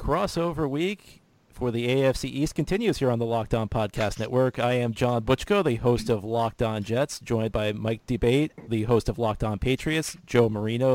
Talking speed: 195 wpm